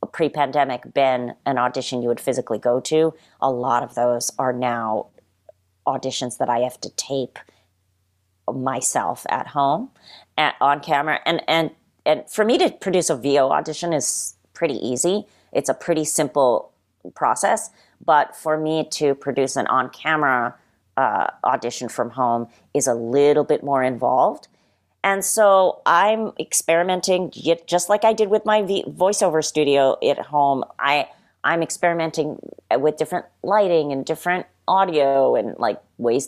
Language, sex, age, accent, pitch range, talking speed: English, female, 40-59, American, 125-165 Hz, 145 wpm